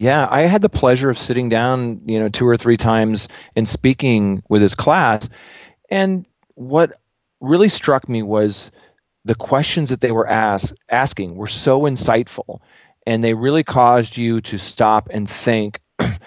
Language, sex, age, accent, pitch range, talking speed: English, male, 40-59, American, 105-120 Hz, 160 wpm